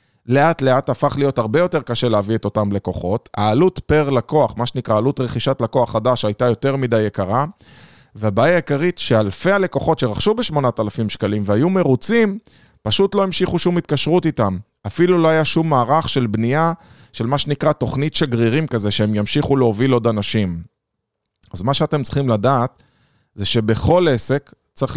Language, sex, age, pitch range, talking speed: Hebrew, male, 20-39, 115-150 Hz, 160 wpm